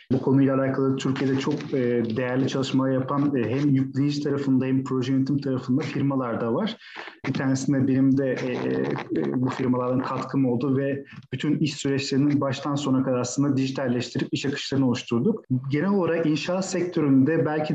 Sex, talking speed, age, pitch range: male, 145 wpm, 40-59, 130-150 Hz